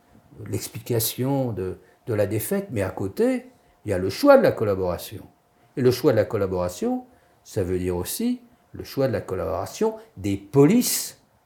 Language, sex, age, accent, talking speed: French, male, 50-69, French, 175 wpm